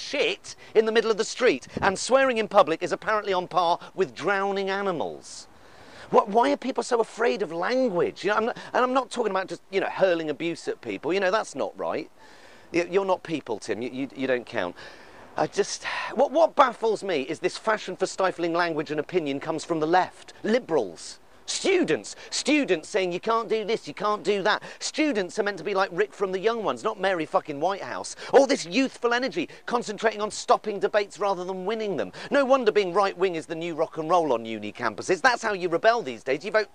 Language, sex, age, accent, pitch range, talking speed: English, male, 40-59, British, 180-230 Hz, 220 wpm